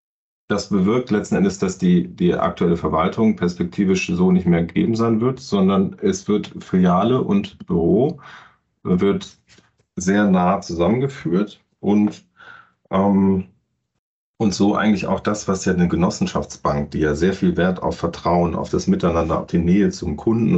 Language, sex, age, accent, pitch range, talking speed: German, male, 40-59, German, 90-140 Hz, 150 wpm